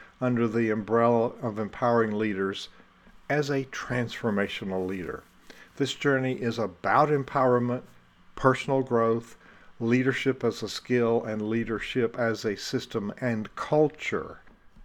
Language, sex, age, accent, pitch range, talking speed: English, male, 50-69, American, 110-130 Hz, 115 wpm